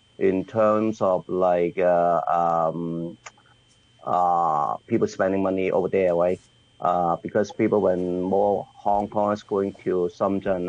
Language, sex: English, male